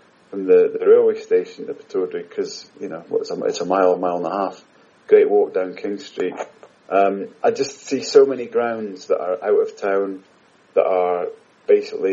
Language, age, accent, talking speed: English, 30-49, British, 195 wpm